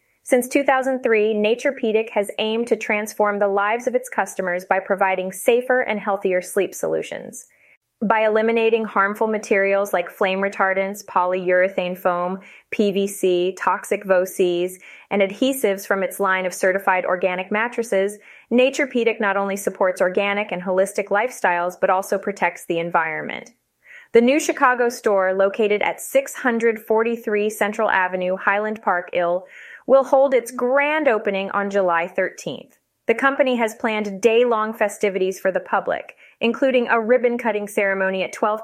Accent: American